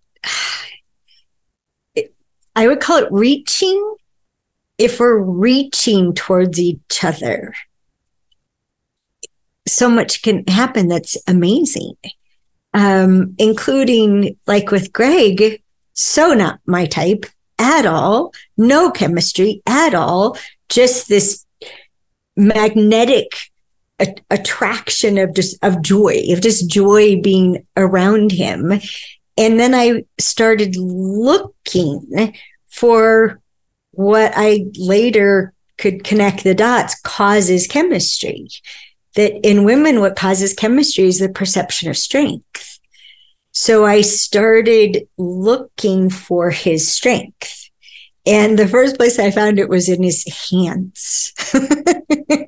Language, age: English, 50-69